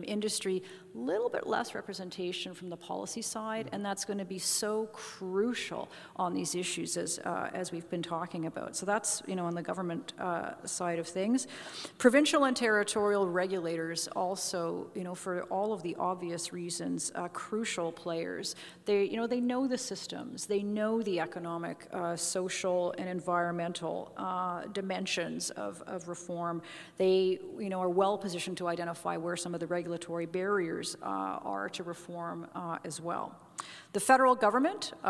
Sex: female